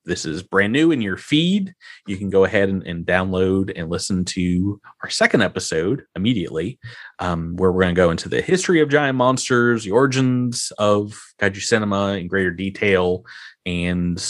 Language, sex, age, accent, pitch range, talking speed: English, male, 30-49, American, 95-125 Hz, 175 wpm